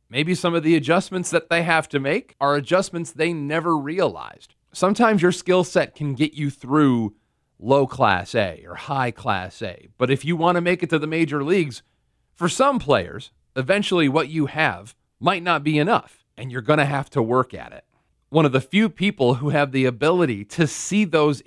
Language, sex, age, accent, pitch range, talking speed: English, male, 40-59, American, 135-175 Hz, 205 wpm